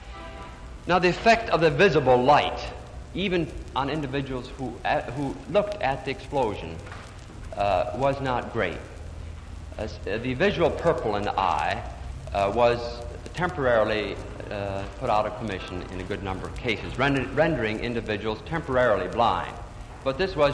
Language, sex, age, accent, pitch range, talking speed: English, male, 50-69, American, 90-140 Hz, 145 wpm